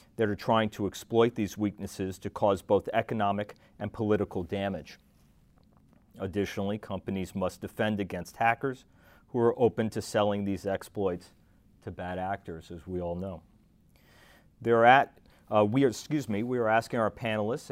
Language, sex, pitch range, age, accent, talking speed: English, male, 100-115 Hz, 40-59, American, 155 wpm